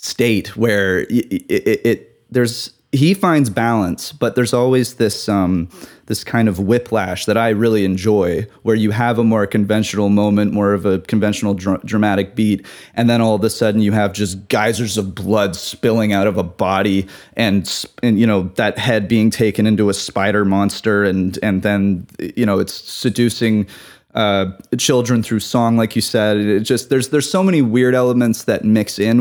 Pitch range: 100-120 Hz